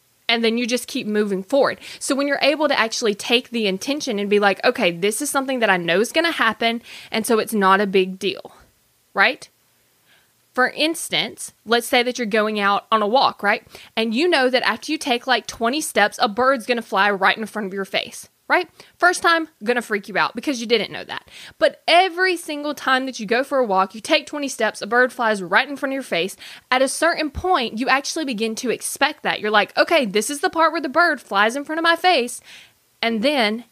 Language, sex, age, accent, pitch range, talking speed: English, female, 20-39, American, 215-290 Hz, 240 wpm